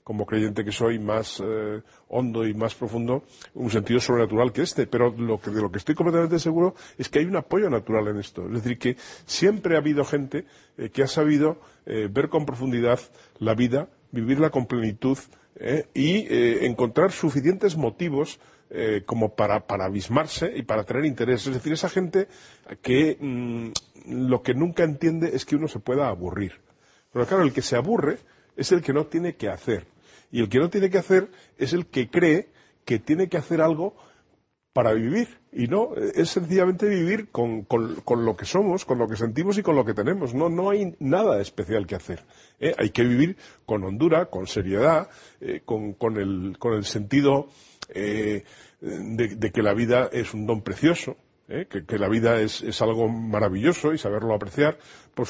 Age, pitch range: 40-59, 110-160 Hz